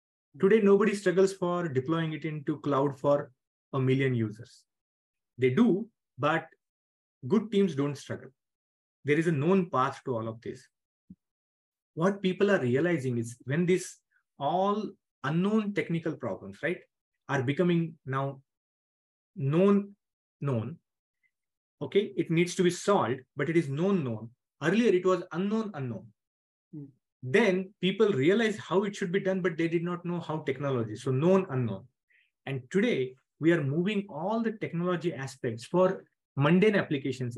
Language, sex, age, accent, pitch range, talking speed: English, male, 30-49, Indian, 130-185 Hz, 145 wpm